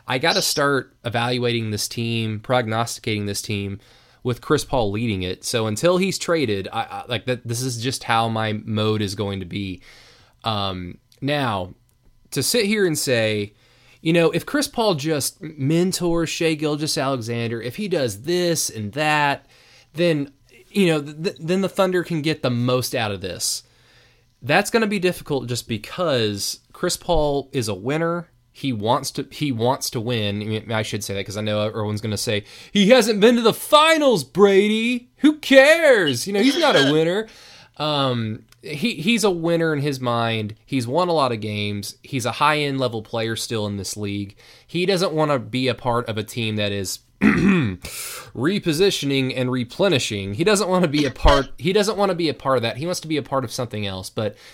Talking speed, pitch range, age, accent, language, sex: 200 wpm, 115-165 Hz, 20-39, American, English, male